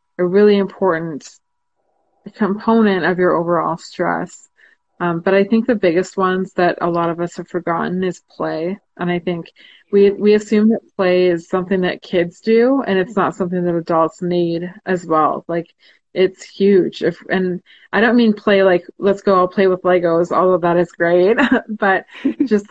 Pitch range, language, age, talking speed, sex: 175-200 Hz, English, 20-39, 180 wpm, female